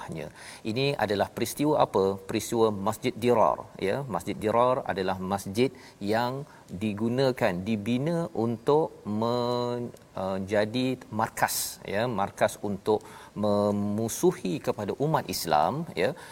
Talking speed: 100 wpm